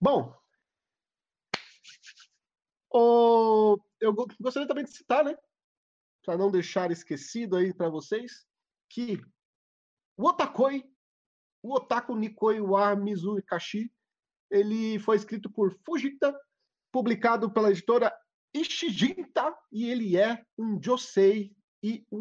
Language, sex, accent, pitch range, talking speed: Portuguese, male, Brazilian, 200-265 Hz, 105 wpm